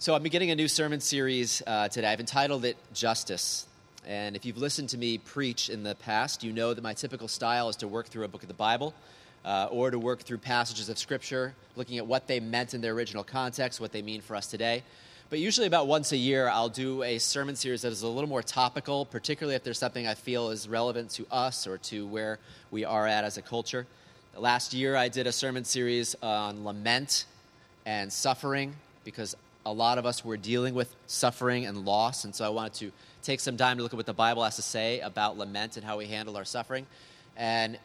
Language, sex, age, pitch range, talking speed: English, male, 30-49, 110-130 Hz, 230 wpm